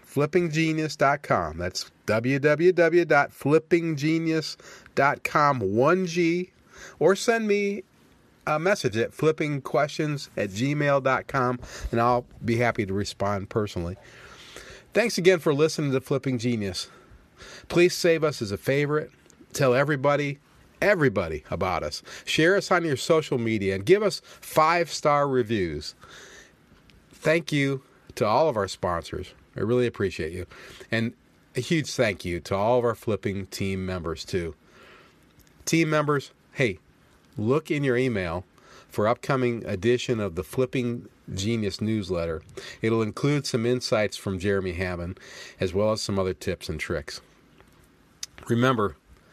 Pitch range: 105-150 Hz